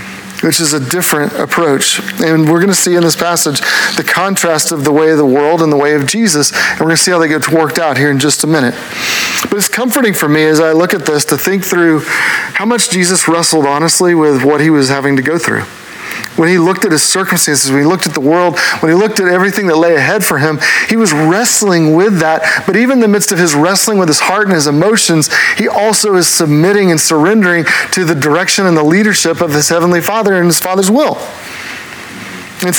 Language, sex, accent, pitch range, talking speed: English, male, American, 155-190 Hz, 235 wpm